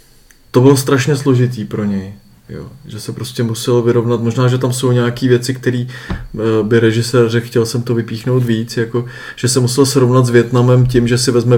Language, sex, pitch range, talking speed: Czech, male, 120-140 Hz, 195 wpm